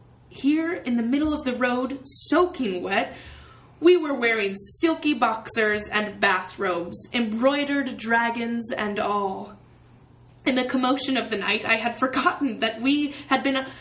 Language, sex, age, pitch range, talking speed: English, female, 20-39, 220-270 Hz, 145 wpm